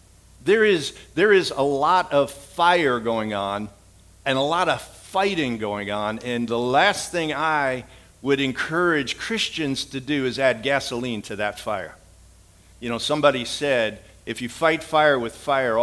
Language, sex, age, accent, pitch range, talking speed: English, male, 50-69, American, 110-155 Hz, 165 wpm